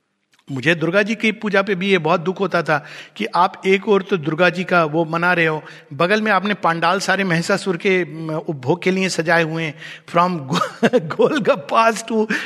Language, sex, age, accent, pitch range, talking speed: Hindi, male, 60-79, native, 170-245 Hz, 195 wpm